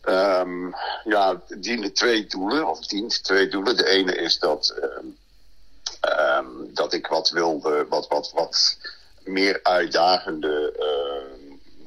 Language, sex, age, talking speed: Dutch, male, 50-69, 125 wpm